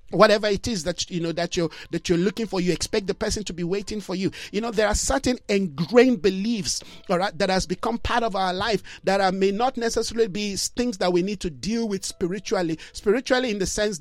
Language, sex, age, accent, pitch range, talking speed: English, male, 50-69, Nigerian, 180-225 Hz, 235 wpm